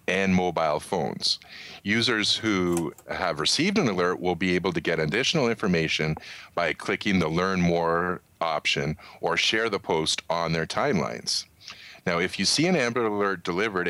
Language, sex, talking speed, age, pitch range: English, male, 160 wpm, 40-59, 80-95 Hz